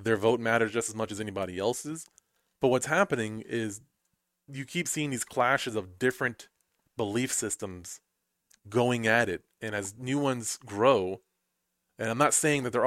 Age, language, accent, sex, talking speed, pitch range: 20-39, English, American, male, 170 wpm, 110-135 Hz